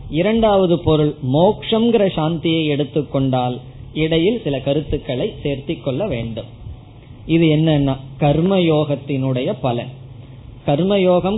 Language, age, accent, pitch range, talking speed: Tamil, 20-39, native, 130-170 Hz, 70 wpm